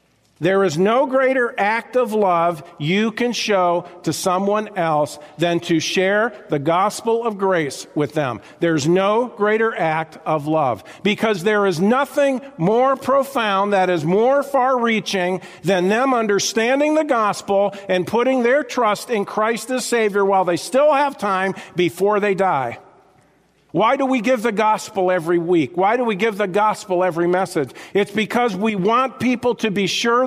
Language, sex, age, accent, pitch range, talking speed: English, male, 50-69, American, 175-230 Hz, 165 wpm